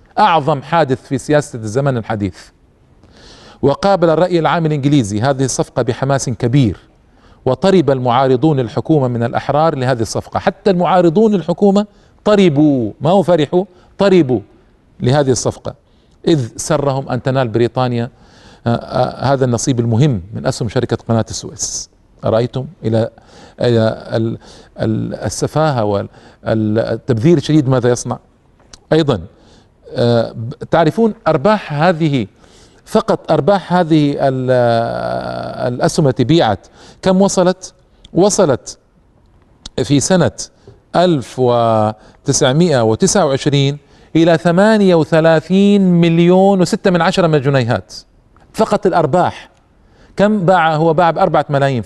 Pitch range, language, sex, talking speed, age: 120-175 Hz, Arabic, male, 95 wpm, 40-59